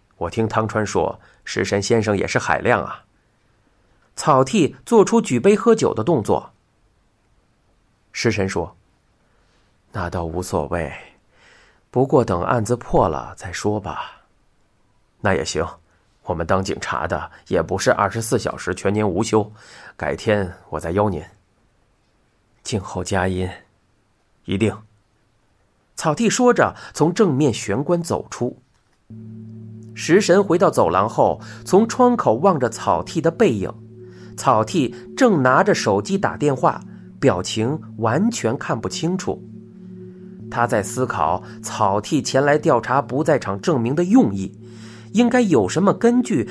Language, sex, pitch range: Chinese, male, 100-145 Hz